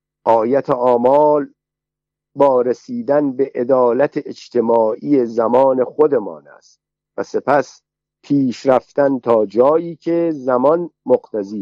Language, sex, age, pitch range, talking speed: Persian, male, 50-69, 125-150 Hz, 95 wpm